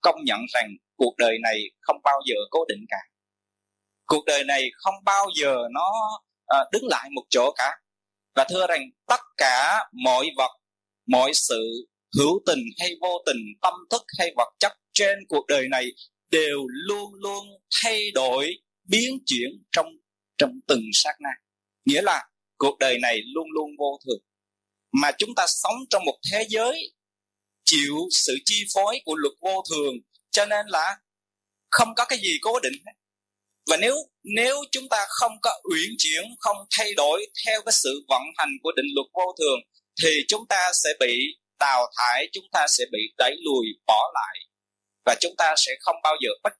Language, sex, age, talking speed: Vietnamese, male, 20-39, 180 wpm